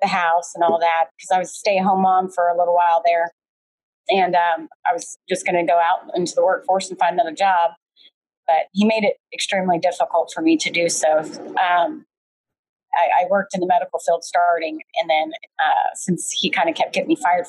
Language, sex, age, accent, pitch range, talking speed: English, female, 30-49, American, 170-245 Hz, 215 wpm